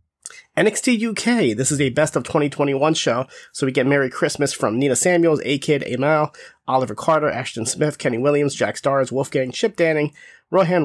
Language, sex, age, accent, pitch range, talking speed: English, male, 30-49, American, 130-150 Hz, 170 wpm